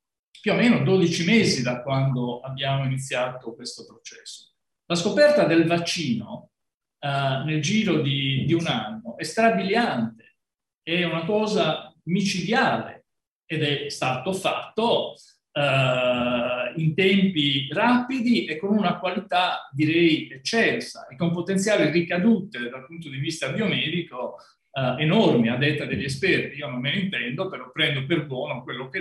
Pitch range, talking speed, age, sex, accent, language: 130-190 Hz, 140 wpm, 50-69, male, native, Italian